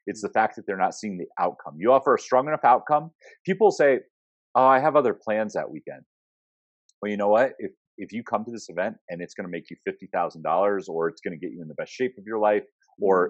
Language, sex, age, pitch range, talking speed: English, male, 30-49, 100-150 Hz, 255 wpm